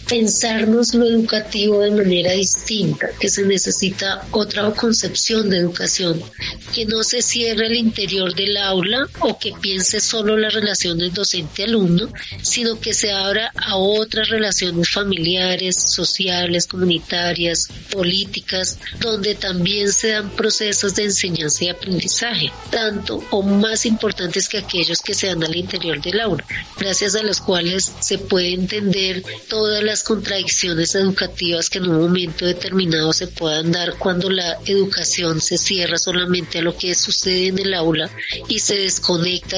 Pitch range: 175-210 Hz